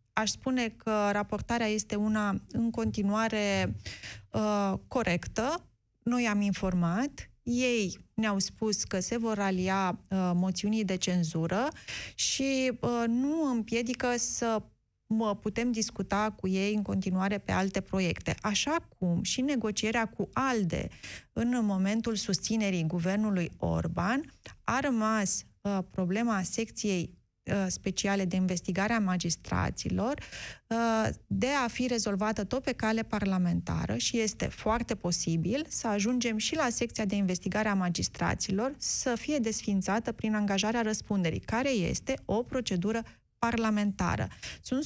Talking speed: 120 wpm